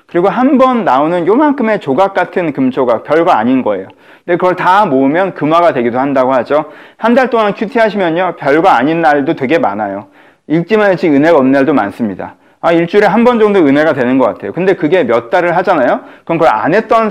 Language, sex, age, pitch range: Korean, male, 40-59, 140-205 Hz